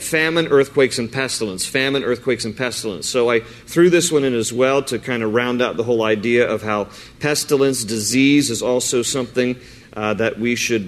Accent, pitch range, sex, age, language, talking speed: American, 115-135 Hz, male, 40-59, English, 195 wpm